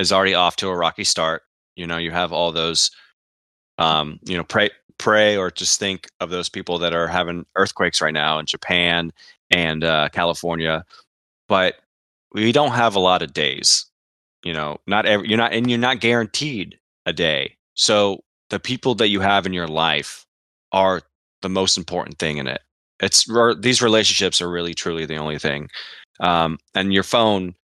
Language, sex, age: English, male, 20-39